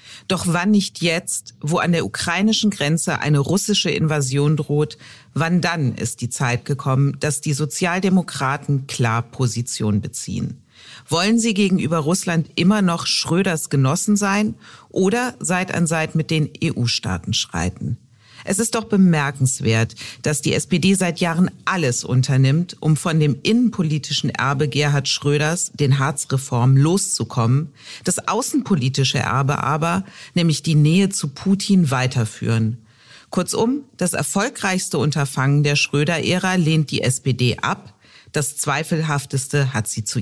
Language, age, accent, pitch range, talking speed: German, 40-59, German, 125-175 Hz, 130 wpm